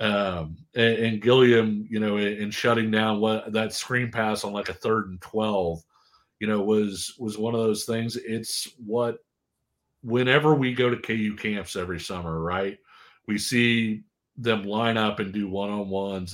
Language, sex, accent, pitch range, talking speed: English, male, American, 105-125 Hz, 175 wpm